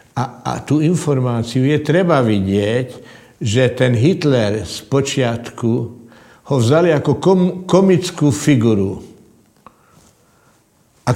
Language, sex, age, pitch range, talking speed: Slovak, male, 60-79, 125-160 Hz, 95 wpm